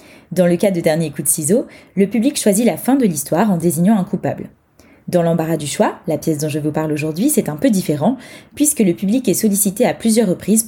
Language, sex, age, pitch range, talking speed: French, female, 20-39, 170-220 Hz, 235 wpm